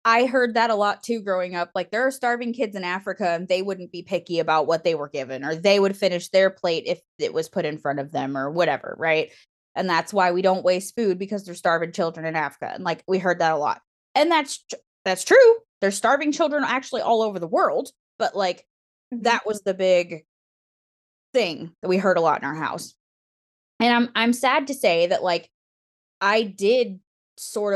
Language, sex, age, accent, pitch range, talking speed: English, female, 20-39, American, 180-230 Hz, 220 wpm